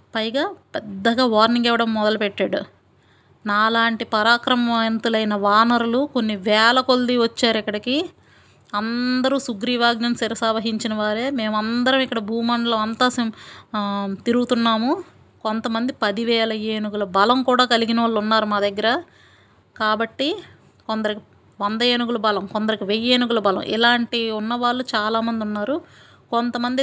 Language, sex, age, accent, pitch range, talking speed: Telugu, female, 30-49, native, 210-240 Hz, 100 wpm